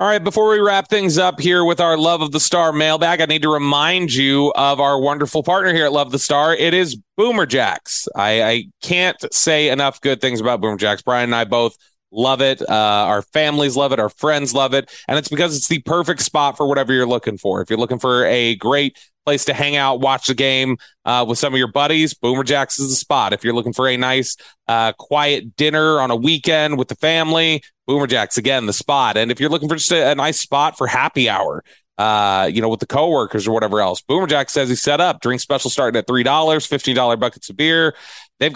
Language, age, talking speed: English, 30-49, 240 wpm